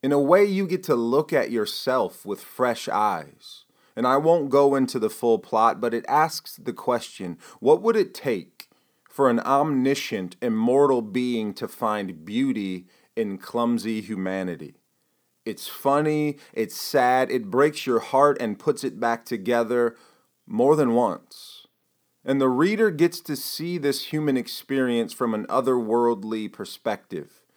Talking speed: 150 wpm